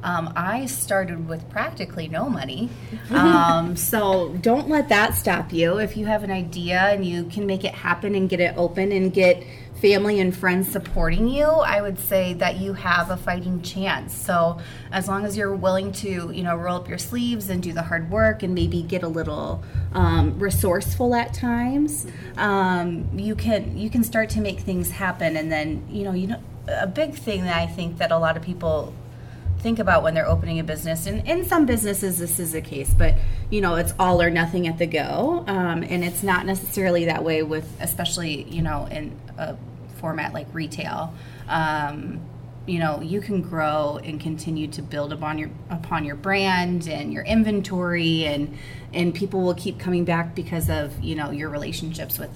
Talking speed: 200 wpm